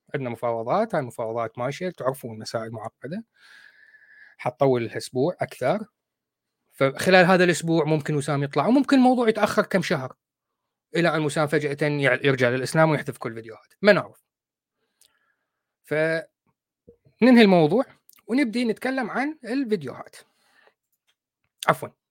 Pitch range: 135-205 Hz